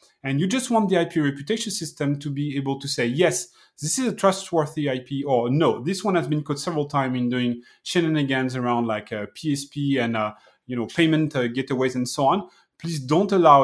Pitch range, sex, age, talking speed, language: 135-175 Hz, male, 30-49, 205 wpm, English